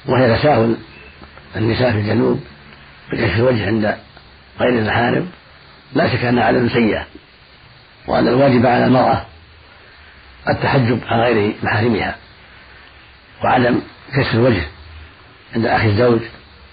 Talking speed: 110 wpm